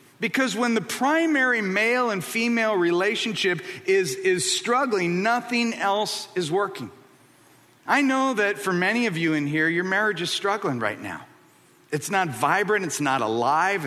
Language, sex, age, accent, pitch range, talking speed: English, male, 50-69, American, 195-285 Hz, 155 wpm